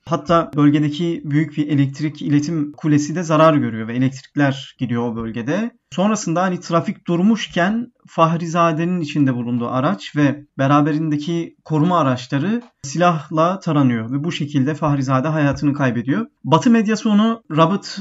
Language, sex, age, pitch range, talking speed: Turkish, male, 30-49, 140-185 Hz, 130 wpm